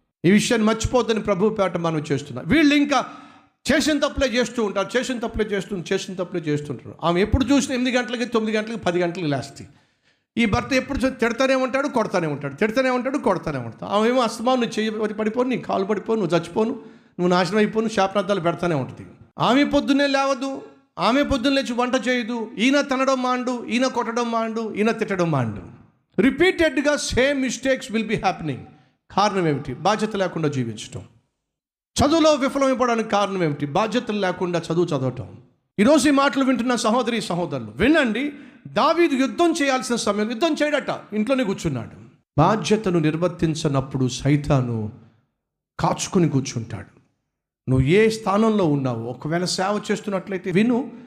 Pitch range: 160-250 Hz